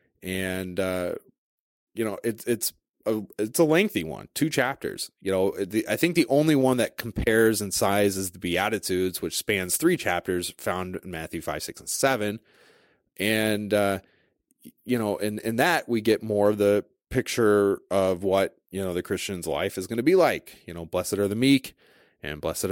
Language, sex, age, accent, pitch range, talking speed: English, male, 30-49, American, 90-110 Hz, 190 wpm